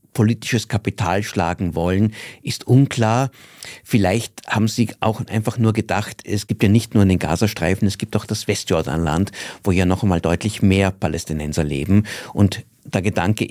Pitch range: 90-115 Hz